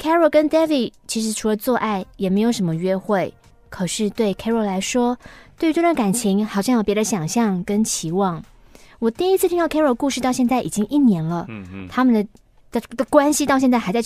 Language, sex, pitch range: Chinese, female, 190-250 Hz